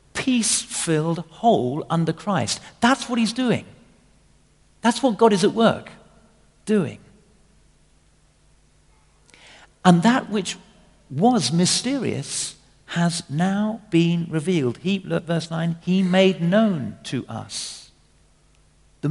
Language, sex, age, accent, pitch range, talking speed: English, male, 50-69, British, 130-190 Hz, 110 wpm